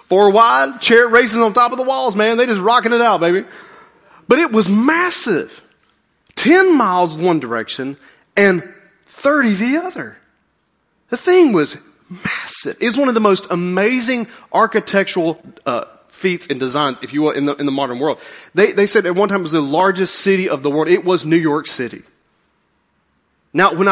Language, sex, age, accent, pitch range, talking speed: English, male, 30-49, American, 145-220 Hz, 185 wpm